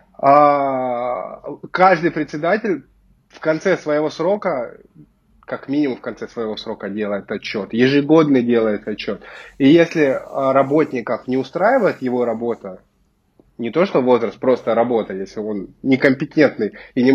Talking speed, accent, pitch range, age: 125 wpm, native, 120-165 Hz, 20-39